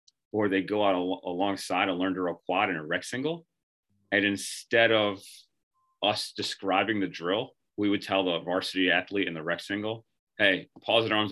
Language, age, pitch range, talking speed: English, 30-49, 95-110 Hz, 200 wpm